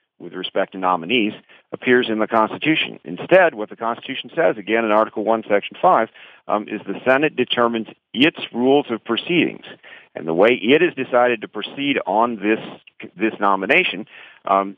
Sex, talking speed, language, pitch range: male, 165 wpm, English, 95-120 Hz